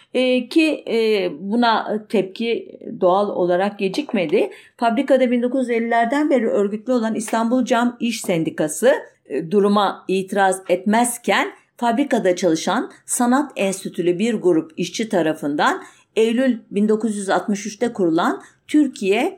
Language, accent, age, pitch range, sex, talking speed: German, Turkish, 50-69, 185-265 Hz, female, 95 wpm